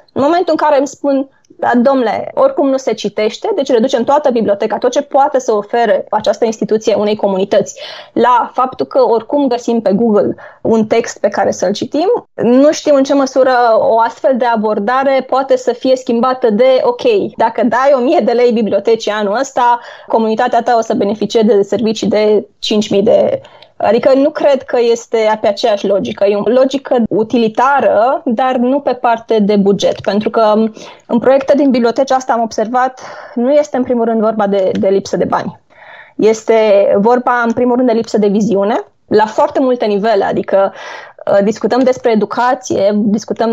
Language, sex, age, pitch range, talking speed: Romanian, female, 20-39, 220-275 Hz, 175 wpm